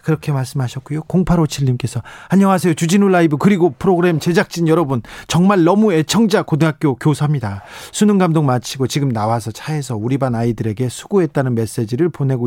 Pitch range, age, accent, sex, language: 135-180 Hz, 40-59, native, male, Korean